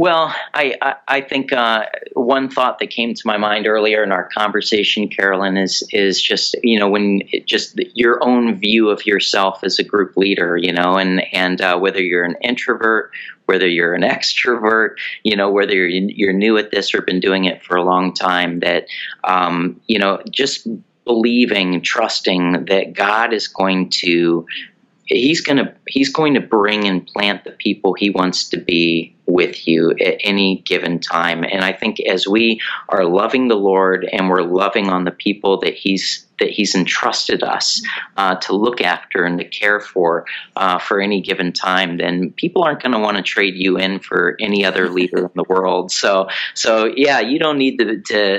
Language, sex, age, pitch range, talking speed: English, male, 40-59, 90-105 Hz, 195 wpm